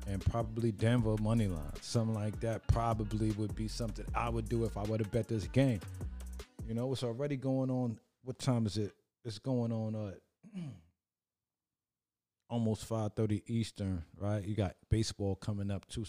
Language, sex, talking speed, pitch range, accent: English, male, 170 wpm, 95-115 Hz, American